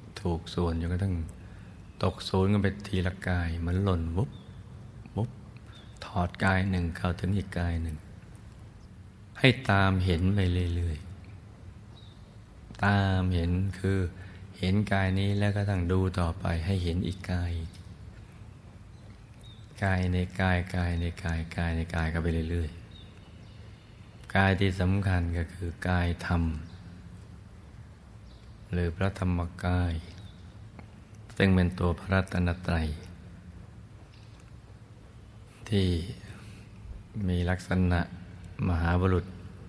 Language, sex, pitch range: Thai, male, 90-105 Hz